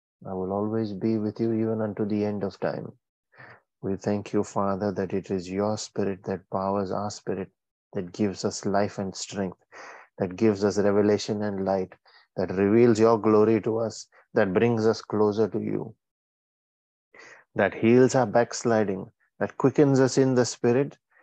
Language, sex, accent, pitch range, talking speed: English, male, Indian, 95-110 Hz, 165 wpm